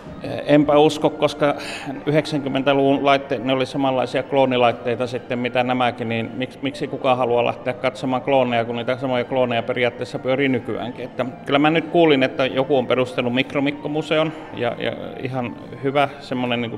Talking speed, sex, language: 145 wpm, male, Finnish